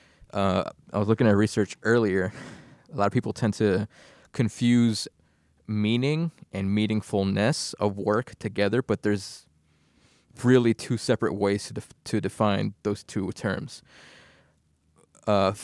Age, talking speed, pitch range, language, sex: 20-39, 130 wpm, 100-115 Hz, English, male